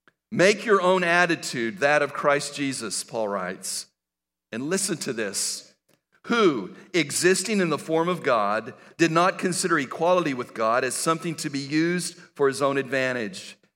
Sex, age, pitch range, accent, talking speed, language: male, 50-69, 135-180 Hz, American, 155 wpm, English